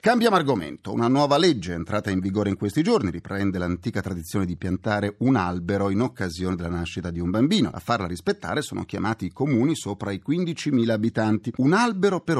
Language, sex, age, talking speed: Italian, male, 40-59, 190 wpm